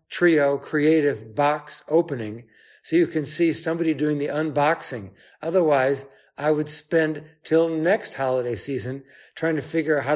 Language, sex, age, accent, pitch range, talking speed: English, male, 60-79, American, 130-155 Hz, 150 wpm